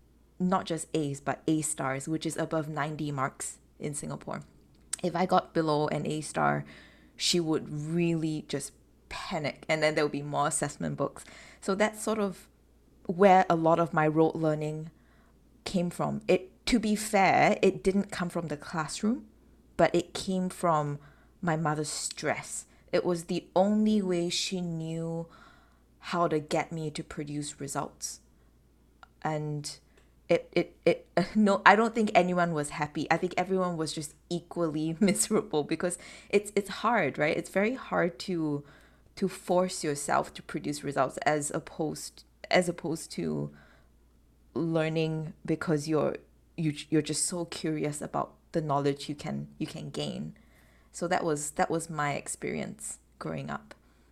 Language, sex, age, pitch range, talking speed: English, female, 20-39, 145-180 Hz, 155 wpm